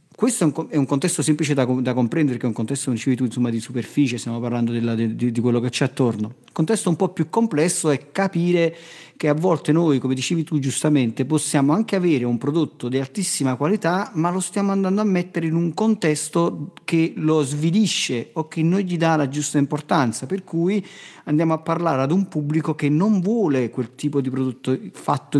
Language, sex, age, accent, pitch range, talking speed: Italian, male, 40-59, native, 130-165 Hz, 210 wpm